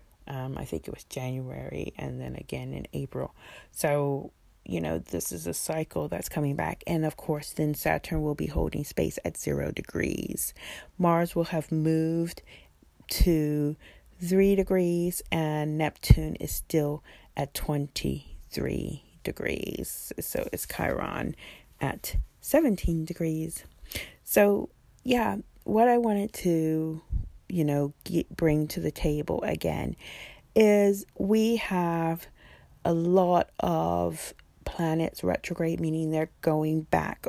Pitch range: 135-170 Hz